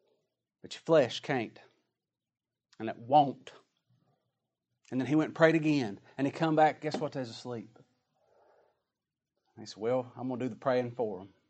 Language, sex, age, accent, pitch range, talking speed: English, male, 40-59, American, 130-170 Hz, 170 wpm